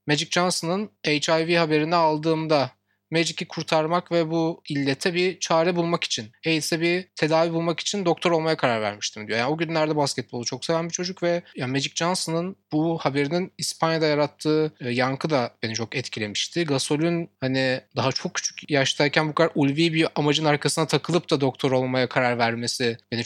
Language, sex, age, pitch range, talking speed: Turkish, male, 30-49, 135-175 Hz, 165 wpm